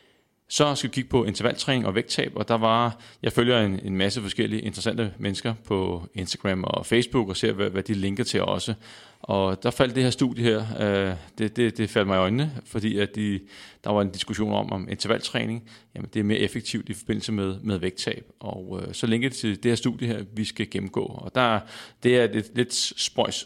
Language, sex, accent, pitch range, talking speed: Danish, male, native, 100-125 Hz, 220 wpm